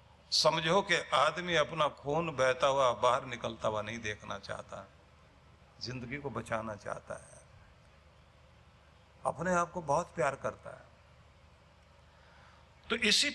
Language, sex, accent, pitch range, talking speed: Hindi, male, native, 110-170 Hz, 120 wpm